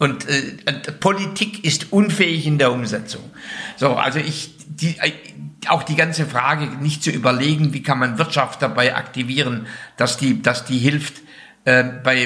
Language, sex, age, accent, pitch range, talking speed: German, male, 60-79, German, 140-185 Hz, 160 wpm